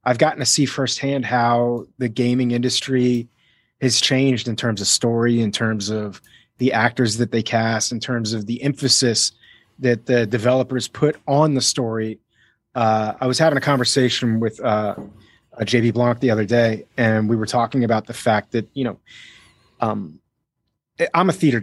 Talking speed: 175 wpm